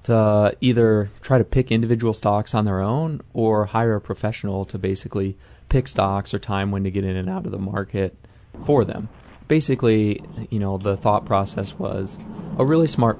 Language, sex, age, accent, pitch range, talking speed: English, male, 30-49, American, 95-110 Hz, 185 wpm